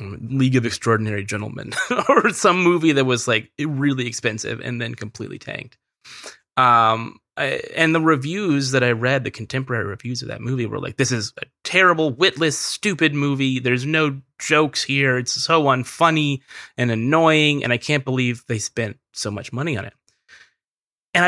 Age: 20-39